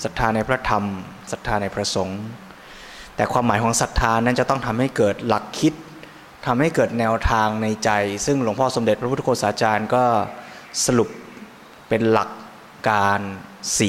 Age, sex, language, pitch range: 20-39, male, Thai, 105-125 Hz